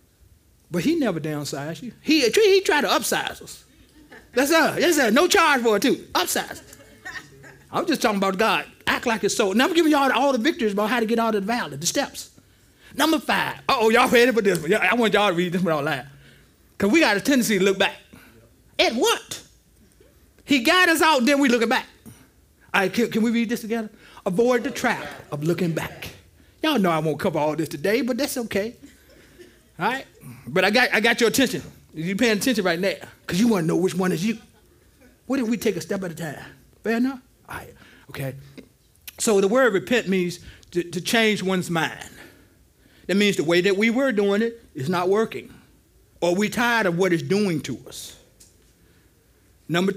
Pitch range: 175-245 Hz